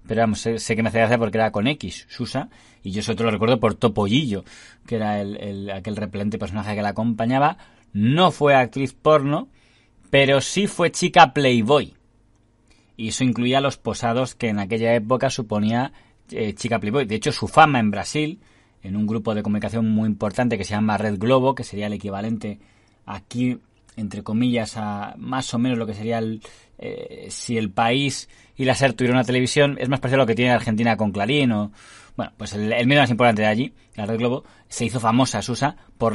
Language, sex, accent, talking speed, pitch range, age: Spanish, male, Spanish, 205 wpm, 110-125 Hz, 30-49